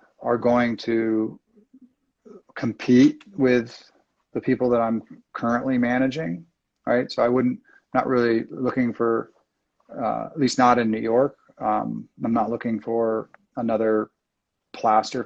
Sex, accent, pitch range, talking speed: male, American, 110-125 Hz, 130 wpm